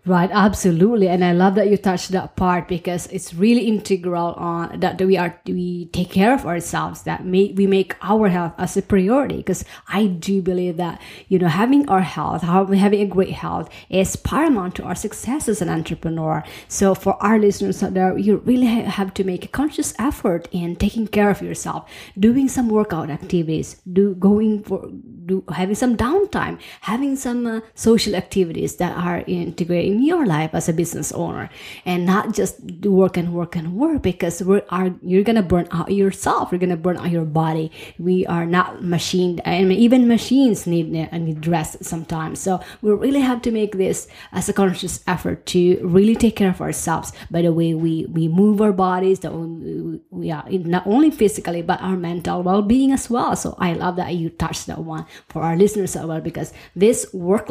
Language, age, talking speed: English, 20-39, 200 wpm